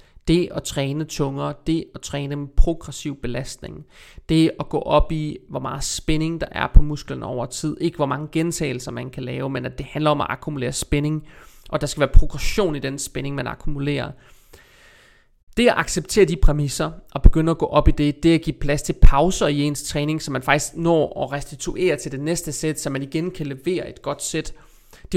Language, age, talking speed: Danish, 30-49, 210 wpm